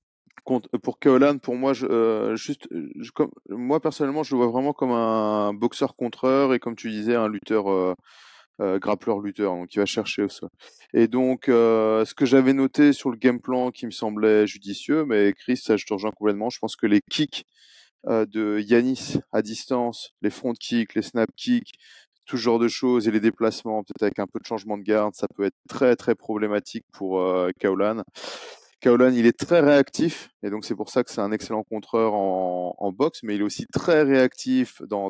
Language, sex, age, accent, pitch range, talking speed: French, male, 20-39, French, 105-125 Hz, 210 wpm